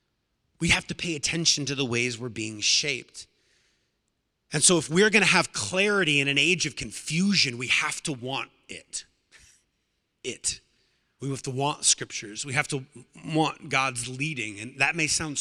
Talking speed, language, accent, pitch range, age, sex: 170 wpm, English, American, 135-170 Hz, 30-49, male